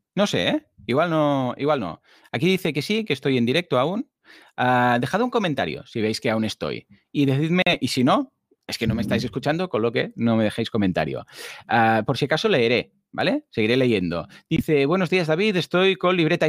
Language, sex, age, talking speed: Spanish, male, 30-49, 195 wpm